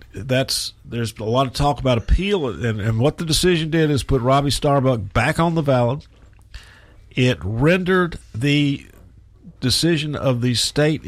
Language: English